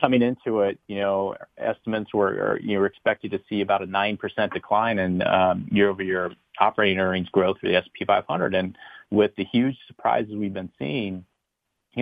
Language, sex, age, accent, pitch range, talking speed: English, male, 40-59, American, 90-105 Hz, 185 wpm